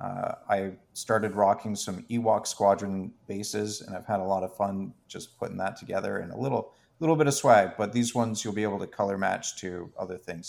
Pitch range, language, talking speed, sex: 95-115 Hz, English, 215 wpm, male